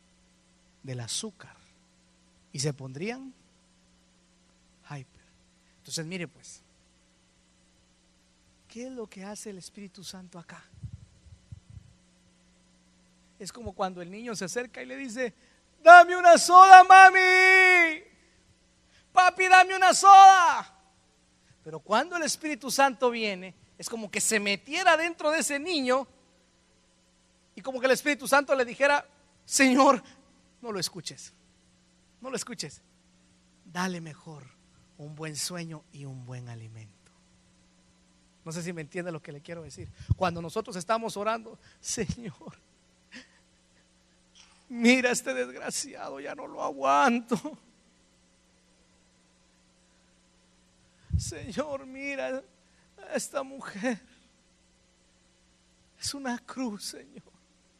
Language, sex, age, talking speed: Spanish, male, 50-69, 110 wpm